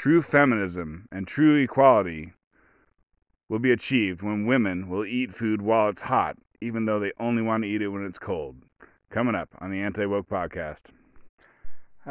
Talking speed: 170 wpm